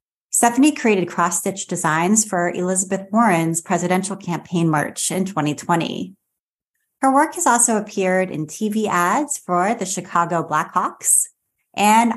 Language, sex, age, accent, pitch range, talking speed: English, female, 30-49, American, 175-230 Hz, 125 wpm